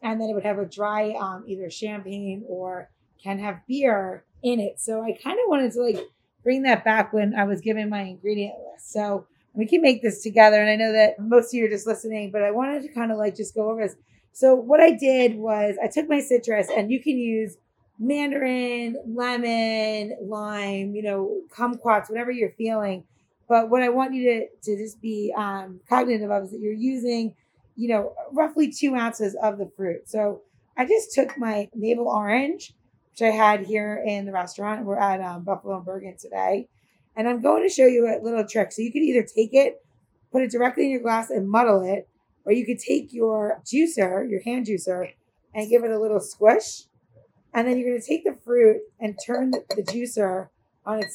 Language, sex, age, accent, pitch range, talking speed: English, female, 30-49, American, 205-245 Hz, 210 wpm